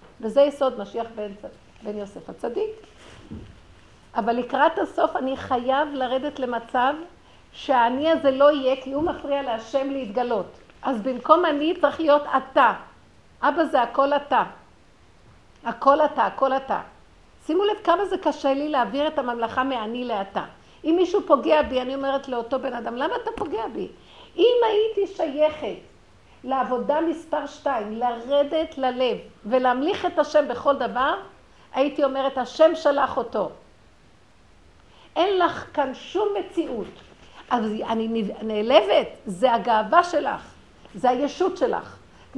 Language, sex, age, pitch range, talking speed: Hebrew, female, 50-69, 245-305 Hz, 135 wpm